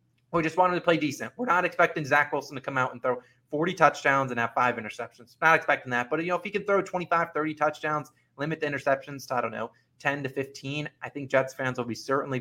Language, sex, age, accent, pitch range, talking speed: English, male, 30-49, American, 120-155 Hz, 250 wpm